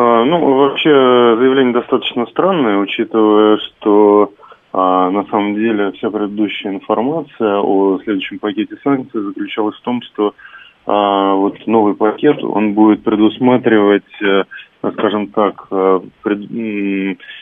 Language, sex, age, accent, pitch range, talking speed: Russian, male, 20-39, native, 100-120 Hz, 115 wpm